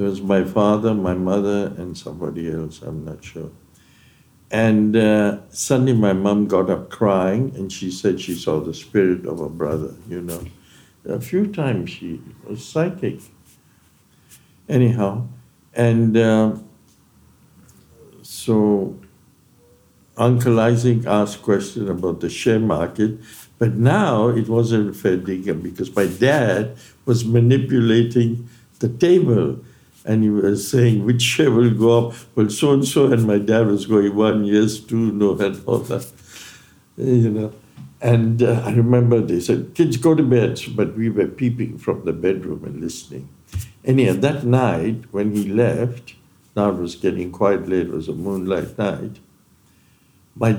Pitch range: 100-120 Hz